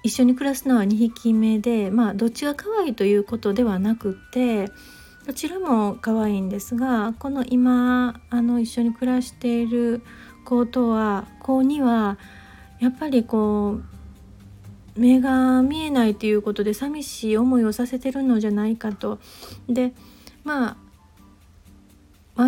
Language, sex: Japanese, female